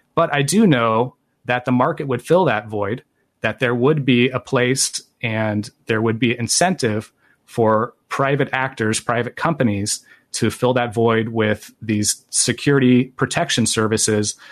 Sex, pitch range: male, 110-130 Hz